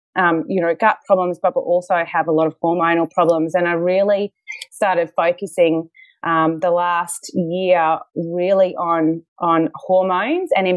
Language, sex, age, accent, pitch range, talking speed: English, female, 30-49, Australian, 165-200 Hz, 160 wpm